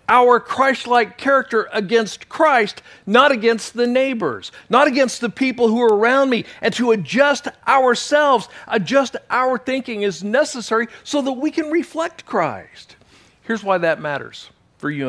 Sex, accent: male, American